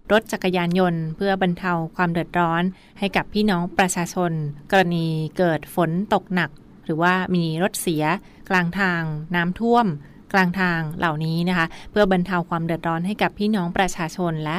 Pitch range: 165-190 Hz